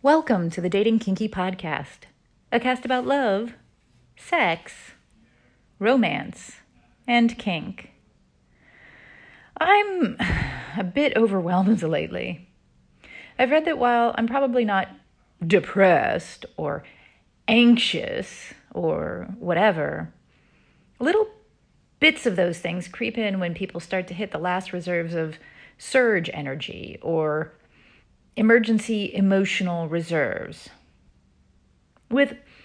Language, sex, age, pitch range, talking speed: English, female, 30-49, 175-240 Hz, 100 wpm